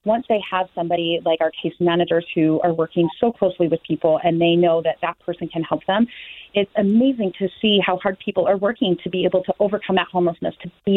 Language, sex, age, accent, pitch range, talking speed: English, female, 30-49, American, 170-190 Hz, 230 wpm